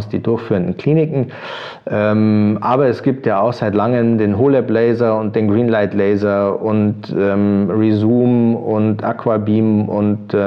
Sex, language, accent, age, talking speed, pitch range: male, German, German, 40-59, 150 wpm, 105-120 Hz